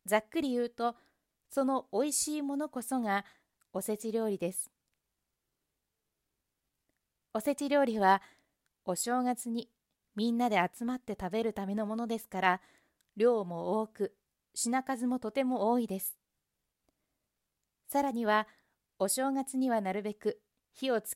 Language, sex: Japanese, female